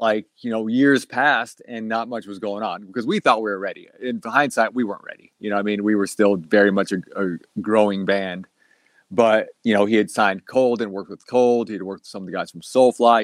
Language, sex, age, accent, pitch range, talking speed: English, male, 30-49, American, 100-115 Hz, 255 wpm